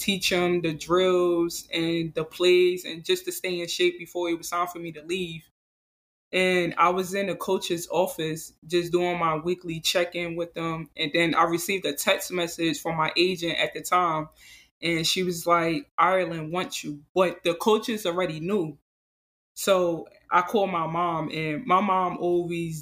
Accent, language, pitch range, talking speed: American, English, 160-180 Hz, 180 wpm